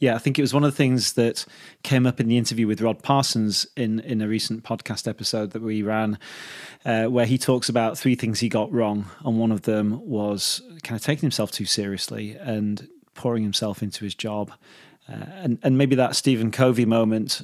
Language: English